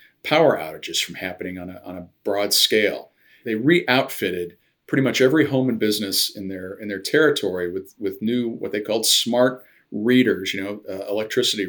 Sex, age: male, 40-59